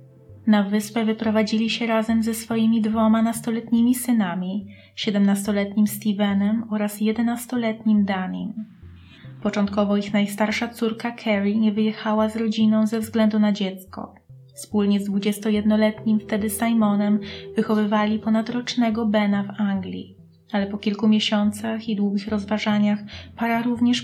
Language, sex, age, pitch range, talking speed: Polish, female, 20-39, 205-225 Hz, 115 wpm